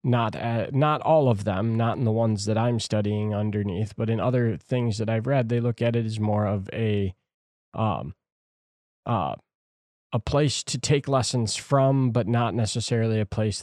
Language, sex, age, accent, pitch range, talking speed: English, male, 20-39, American, 105-125 Hz, 185 wpm